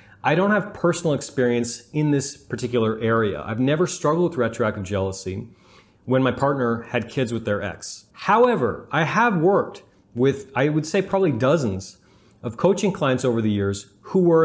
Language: English